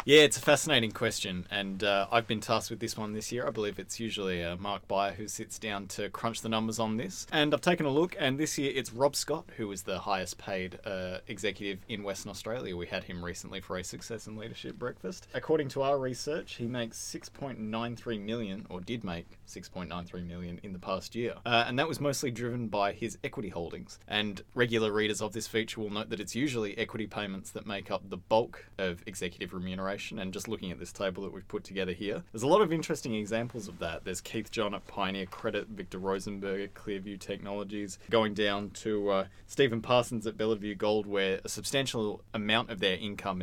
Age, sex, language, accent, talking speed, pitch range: 20-39, male, English, Australian, 215 wpm, 95-115 Hz